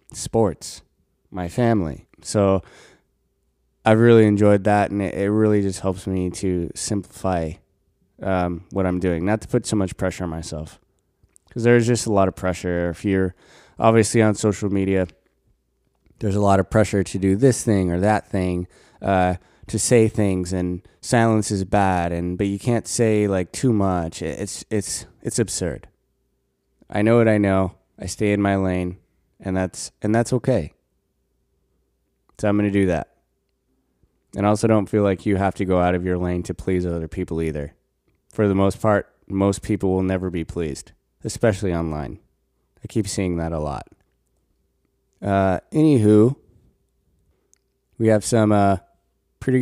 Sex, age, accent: male, 20-39, American